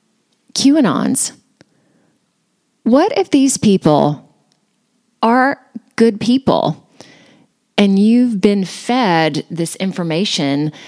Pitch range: 165-235 Hz